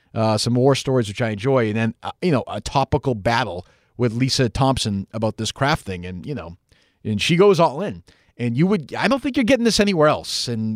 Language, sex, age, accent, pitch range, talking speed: English, male, 40-59, American, 100-135 Hz, 235 wpm